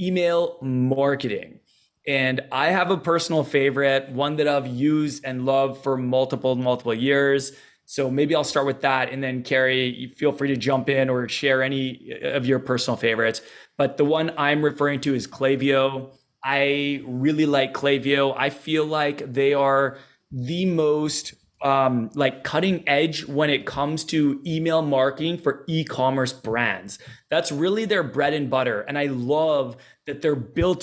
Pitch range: 135-155 Hz